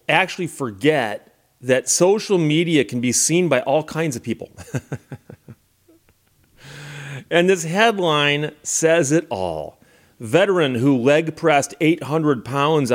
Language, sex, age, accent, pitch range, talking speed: English, male, 30-49, American, 120-155 Hz, 115 wpm